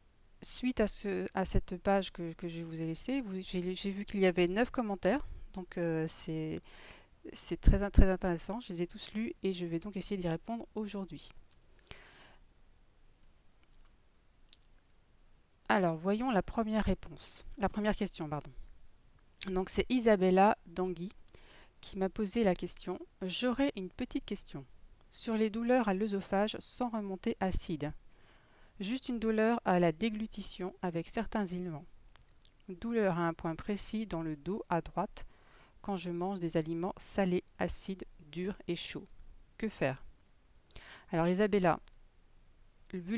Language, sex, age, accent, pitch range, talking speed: French, female, 40-59, French, 165-205 Hz, 145 wpm